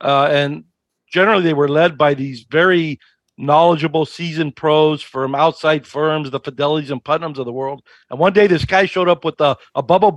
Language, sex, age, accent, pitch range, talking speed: English, male, 50-69, American, 145-180 Hz, 195 wpm